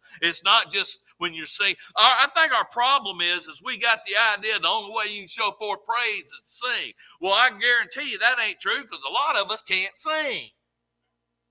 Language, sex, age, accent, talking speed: English, male, 50-69, American, 220 wpm